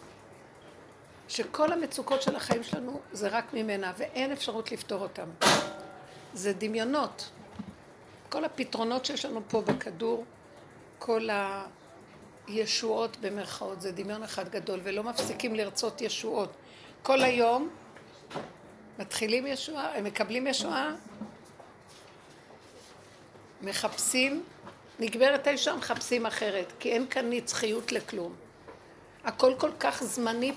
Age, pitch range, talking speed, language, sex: 60-79, 210-260 Hz, 100 wpm, Hebrew, female